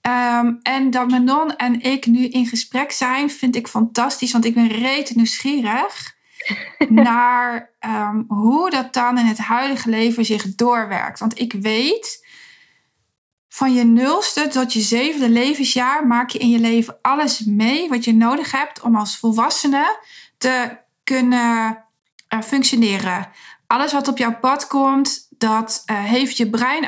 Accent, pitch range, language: Dutch, 225-260 Hz, Dutch